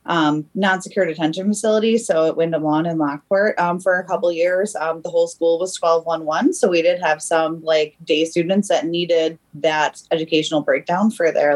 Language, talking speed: English, 190 wpm